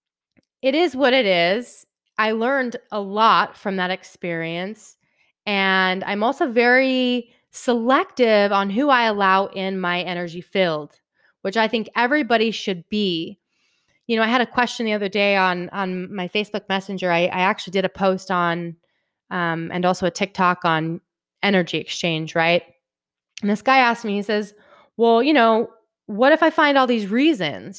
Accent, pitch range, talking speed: American, 185-245 Hz, 170 wpm